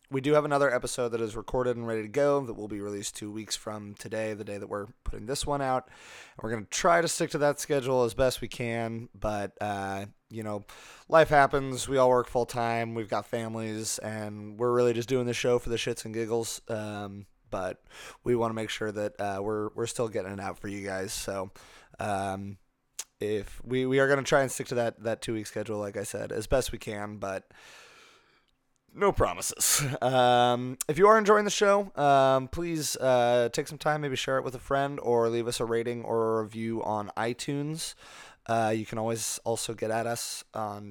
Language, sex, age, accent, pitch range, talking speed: English, male, 20-39, American, 110-135 Hz, 220 wpm